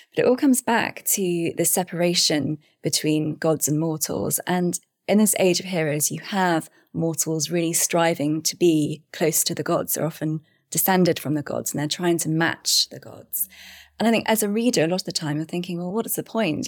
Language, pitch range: English, 155-185 Hz